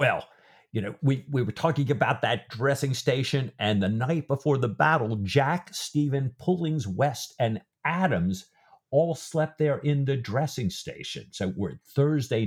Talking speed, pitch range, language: 160 wpm, 105-145 Hz, English